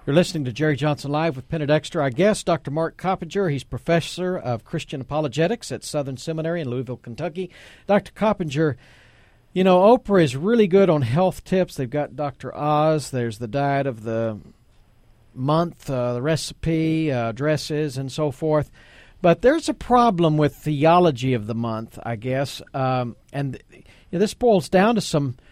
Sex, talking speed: male, 175 wpm